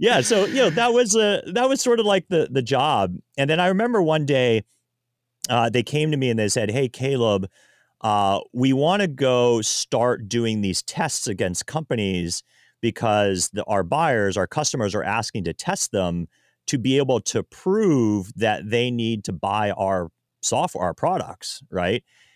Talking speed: 180 wpm